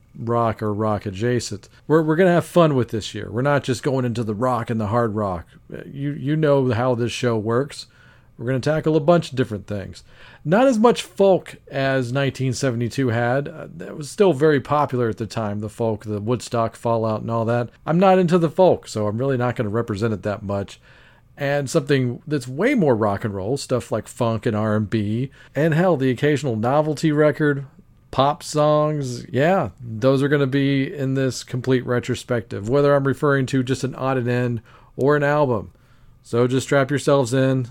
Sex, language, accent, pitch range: male, English, American, 115-140 Hz